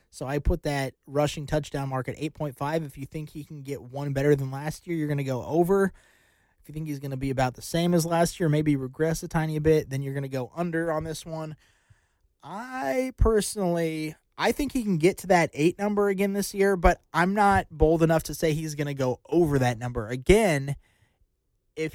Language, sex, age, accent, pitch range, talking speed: English, male, 20-39, American, 130-165 Hz, 225 wpm